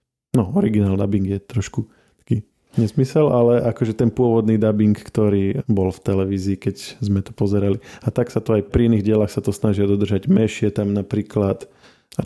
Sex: male